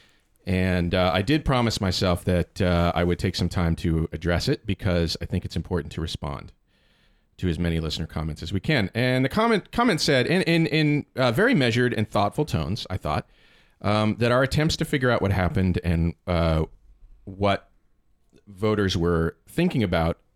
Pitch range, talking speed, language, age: 85-120 Hz, 185 wpm, English, 40-59